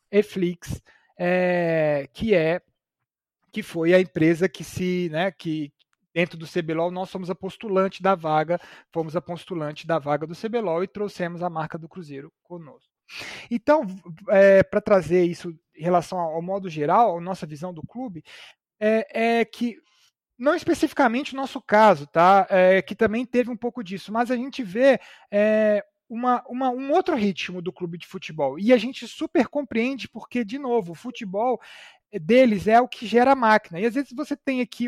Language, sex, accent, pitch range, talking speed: Portuguese, male, Brazilian, 185-245 Hz, 175 wpm